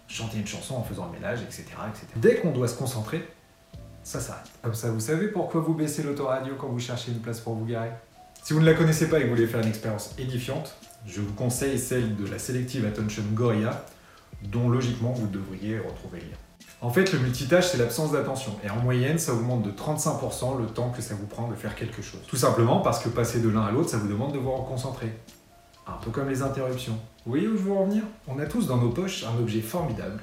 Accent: French